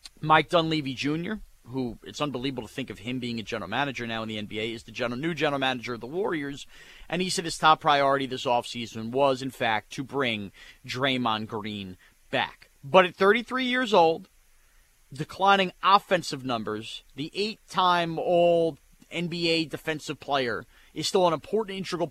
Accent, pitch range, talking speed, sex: American, 135-185 Hz, 170 wpm, male